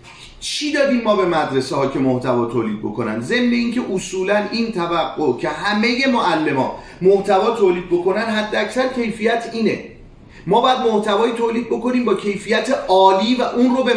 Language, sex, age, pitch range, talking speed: Persian, male, 40-59, 175-230 Hz, 165 wpm